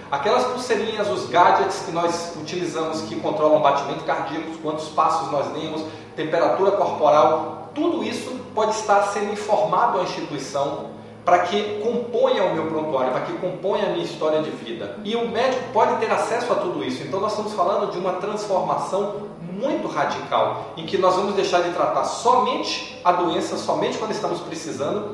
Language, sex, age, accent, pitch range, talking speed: Portuguese, male, 40-59, Brazilian, 160-205 Hz, 170 wpm